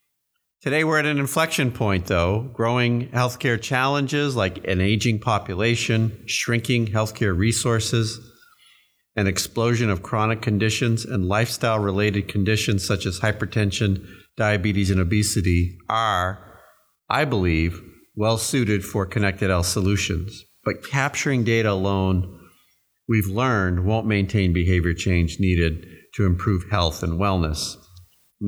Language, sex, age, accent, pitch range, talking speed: English, male, 50-69, American, 90-110 Hz, 120 wpm